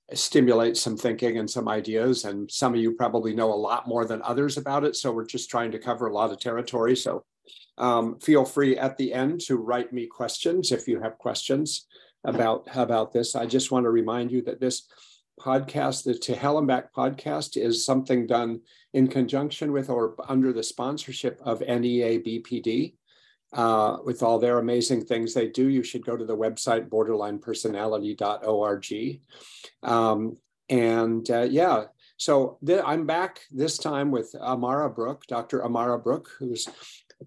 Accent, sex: American, male